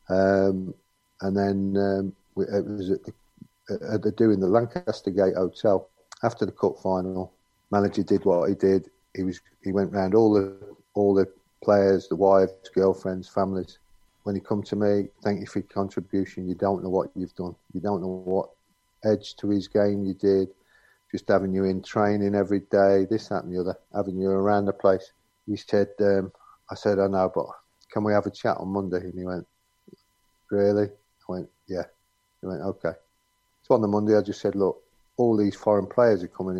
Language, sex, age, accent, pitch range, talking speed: English, male, 50-69, British, 95-105 Hz, 195 wpm